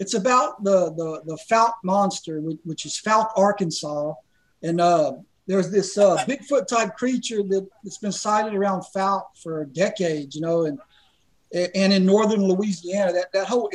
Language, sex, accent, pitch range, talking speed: English, male, American, 180-215 Hz, 155 wpm